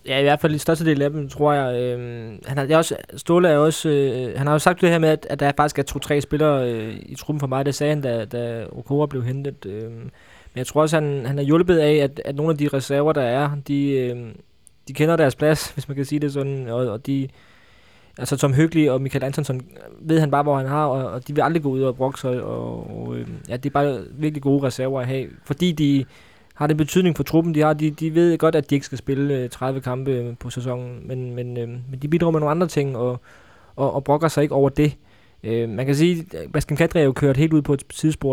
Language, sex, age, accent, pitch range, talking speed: Danish, male, 20-39, native, 130-150 Hz, 245 wpm